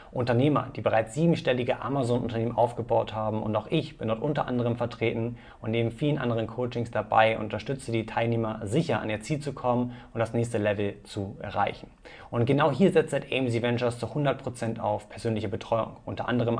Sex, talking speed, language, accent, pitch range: male, 180 wpm, German, German, 115-130 Hz